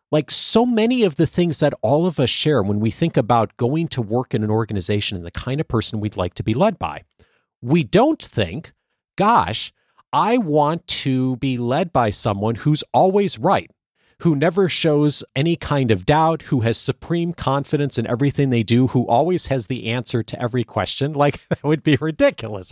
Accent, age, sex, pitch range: American, 40-59, male, 115-170 Hz